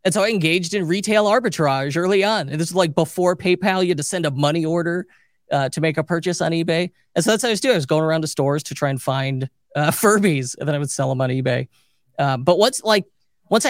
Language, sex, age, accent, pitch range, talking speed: English, male, 30-49, American, 140-185 Hz, 265 wpm